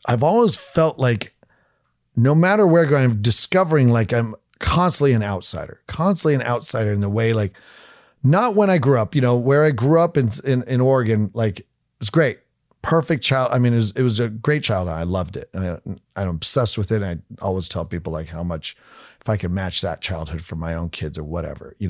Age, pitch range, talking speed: 40-59, 100-140 Hz, 220 wpm